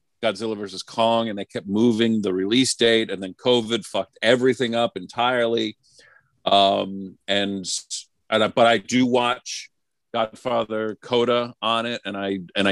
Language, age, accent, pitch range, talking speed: English, 50-69, American, 95-120 Hz, 145 wpm